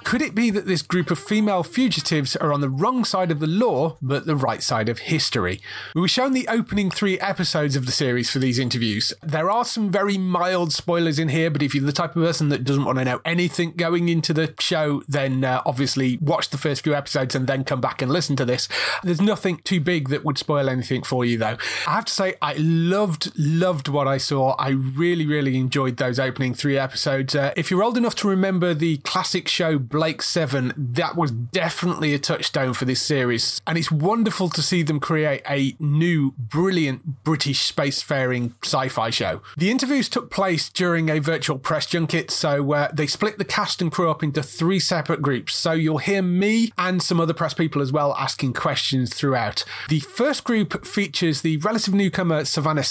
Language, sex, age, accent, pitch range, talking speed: English, male, 30-49, British, 135-175 Hz, 210 wpm